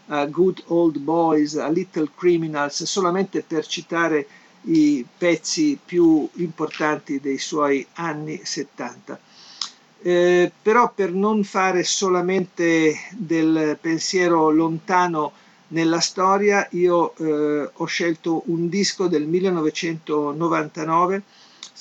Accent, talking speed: native, 100 wpm